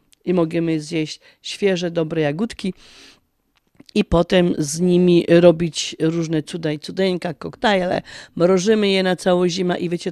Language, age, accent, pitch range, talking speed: Polish, 40-59, native, 165-200 Hz, 135 wpm